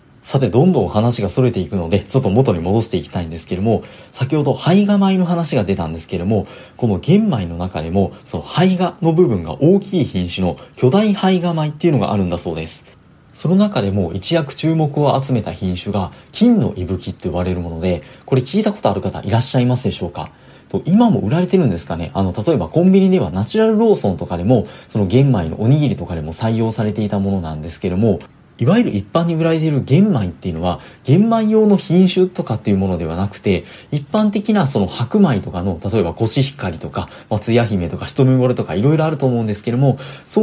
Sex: male